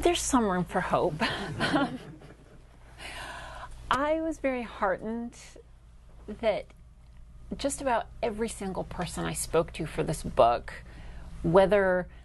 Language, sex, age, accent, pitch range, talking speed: English, female, 30-49, American, 160-205 Hz, 110 wpm